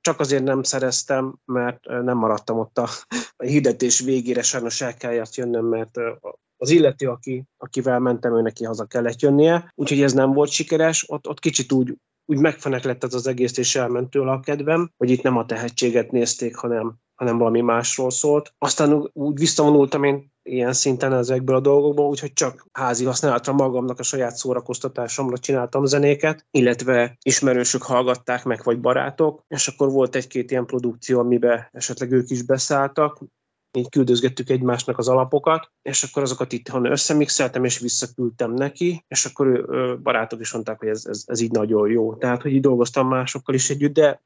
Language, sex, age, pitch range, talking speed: Hungarian, male, 30-49, 120-140 Hz, 165 wpm